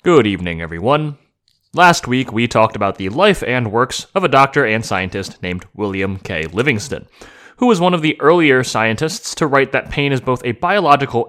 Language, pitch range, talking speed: English, 110-170 Hz, 190 wpm